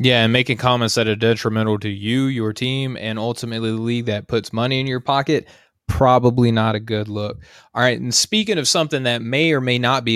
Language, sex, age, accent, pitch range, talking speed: English, male, 20-39, American, 110-125 Hz, 225 wpm